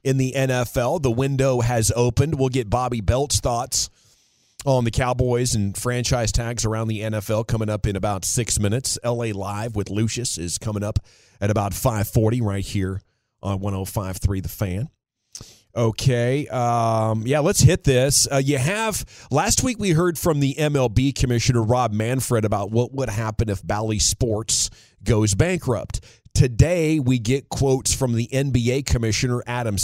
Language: English